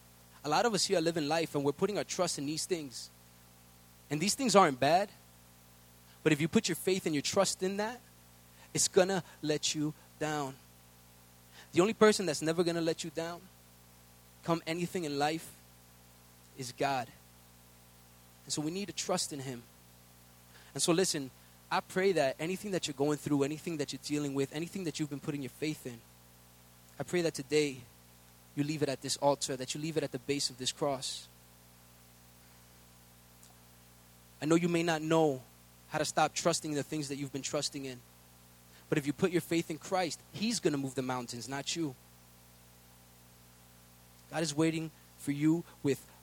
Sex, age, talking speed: male, 20-39, 190 wpm